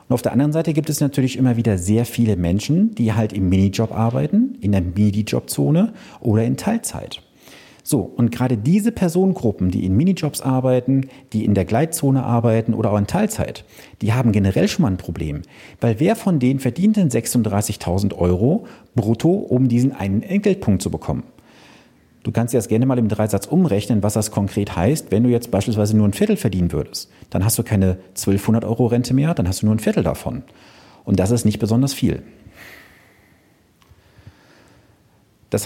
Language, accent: German, German